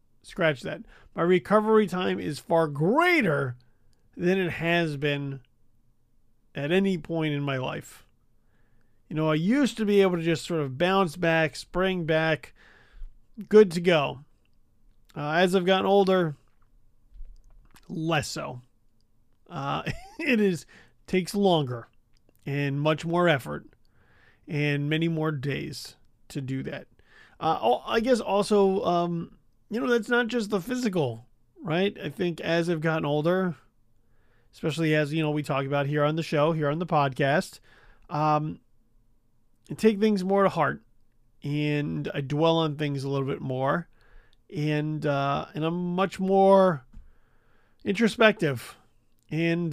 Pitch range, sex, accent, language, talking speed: 120-185 Hz, male, American, English, 140 wpm